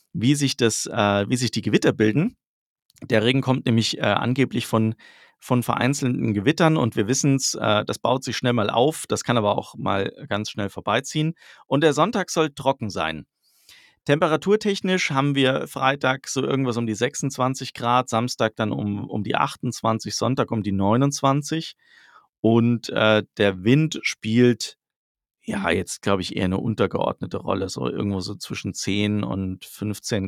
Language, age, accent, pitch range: German, 40-59, German, 105-140 Hz